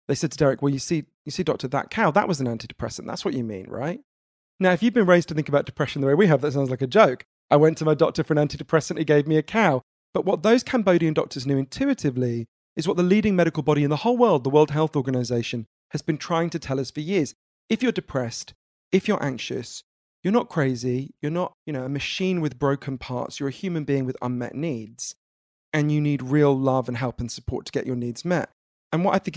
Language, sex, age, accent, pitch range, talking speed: English, male, 40-59, British, 130-170 Hz, 255 wpm